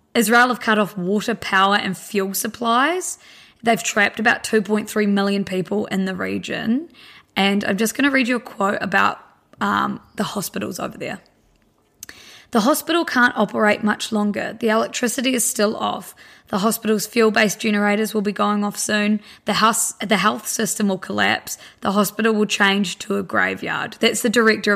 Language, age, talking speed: English, 20-39, 170 wpm